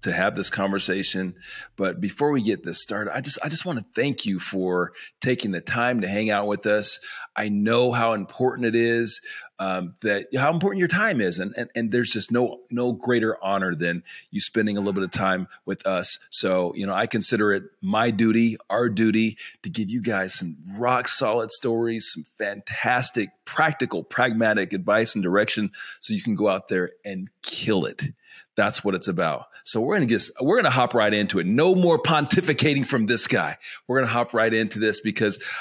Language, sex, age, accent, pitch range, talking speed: English, male, 40-59, American, 100-150 Hz, 205 wpm